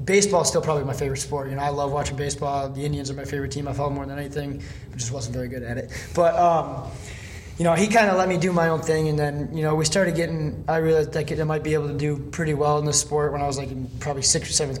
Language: English